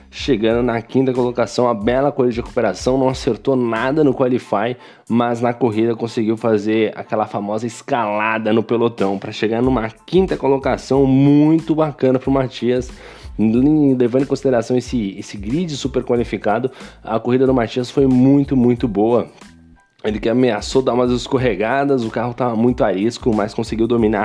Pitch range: 110-135 Hz